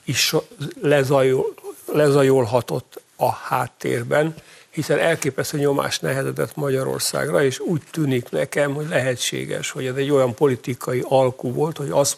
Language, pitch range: Hungarian, 125-145 Hz